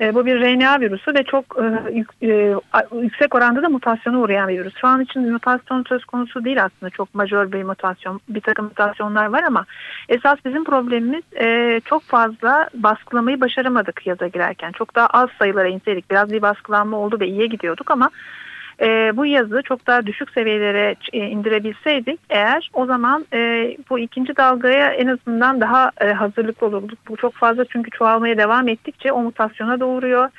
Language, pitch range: Turkish, 205-255 Hz